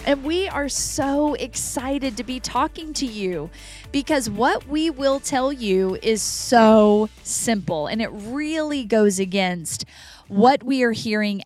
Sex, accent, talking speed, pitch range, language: female, American, 145 wpm, 190-275 Hz, English